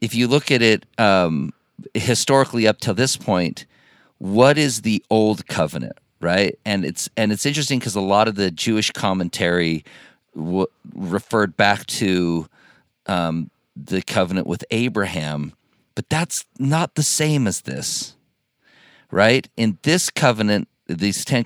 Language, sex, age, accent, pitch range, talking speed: English, male, 40-59, American, 95-130 Hz, 145 wpm